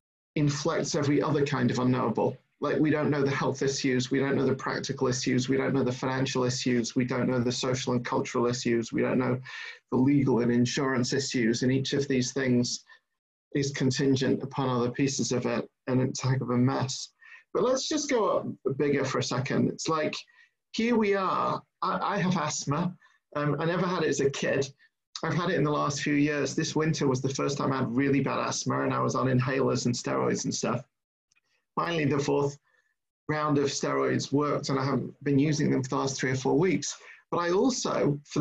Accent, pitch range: British, 130-165 Hz